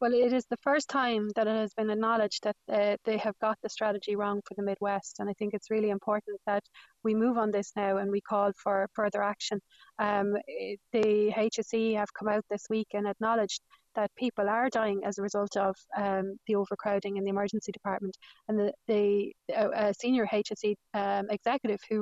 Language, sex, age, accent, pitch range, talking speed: English, female, 30-49, Irish, 205-220 Hz, 205 wpm